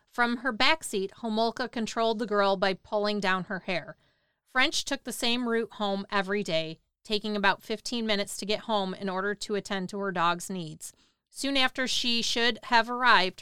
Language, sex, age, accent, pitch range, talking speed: English, female, 30-49, American, 195-235 Hz, 185 wpm